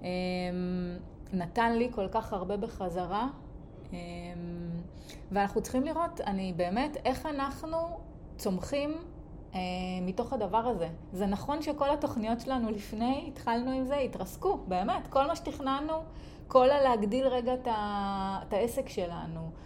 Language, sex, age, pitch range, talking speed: Hebrew, female, 30-49, 195-265 Hz, 120 wpm